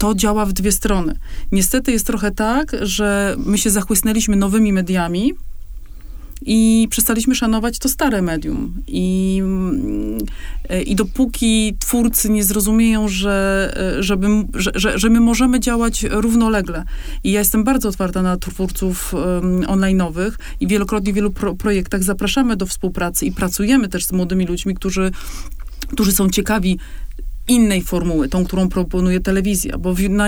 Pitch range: 190-230 Hz